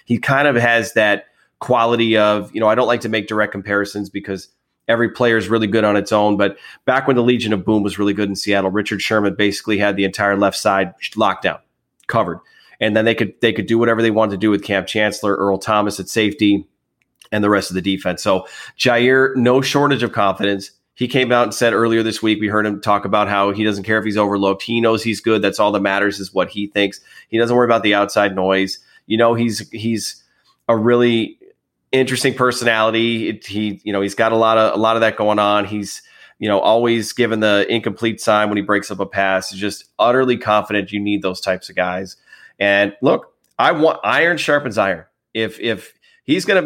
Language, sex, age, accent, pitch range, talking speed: English, male, 30-49, American, 100-115 Hz, 225 wpm